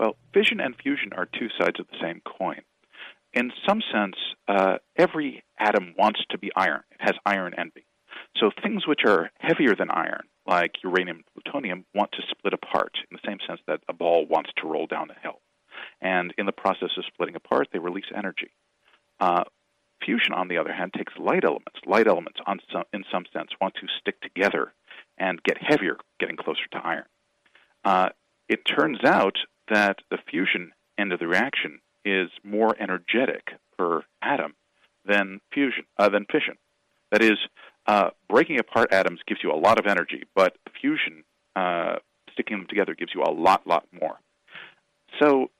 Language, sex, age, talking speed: English, male, 40-59, 175 wpm